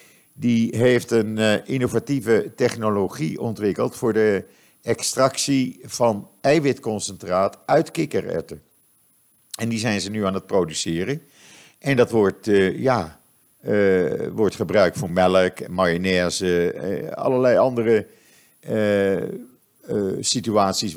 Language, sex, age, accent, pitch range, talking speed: Dutch, male, 50-69, Dutch, 95-125 Hz, 100 wpm